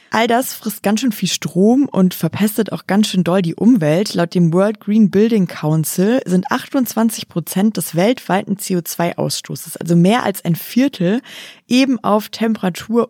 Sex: female